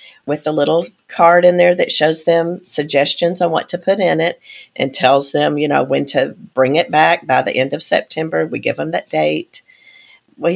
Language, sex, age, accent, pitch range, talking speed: English, female, 40-59, American, 145-170 Hz, 210 wpm